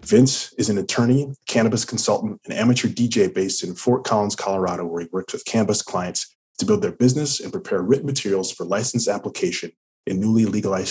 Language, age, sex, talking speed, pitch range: English, 20-39, male, 185 wpm, 100-125 Hz